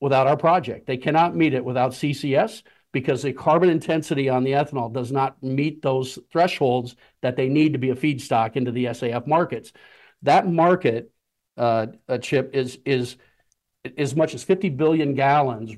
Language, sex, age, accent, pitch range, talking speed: English, male, 50-69, American, 130-160 Hz, 170 wpm